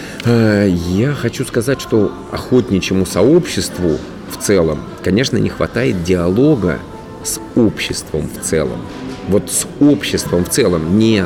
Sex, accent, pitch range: male, native, 90-120 Hz